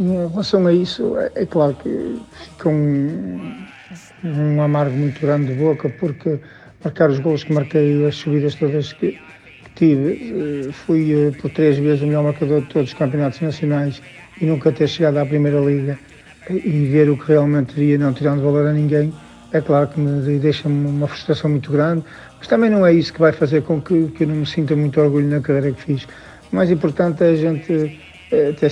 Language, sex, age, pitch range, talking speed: Portuguese, male, 50-69, 145-160 Hz, 205 wpm